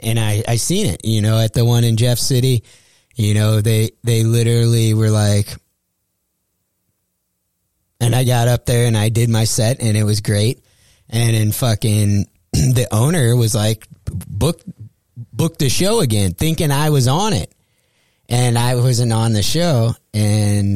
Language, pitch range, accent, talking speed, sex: English, 100-125 Hz, American, 170 wpm, male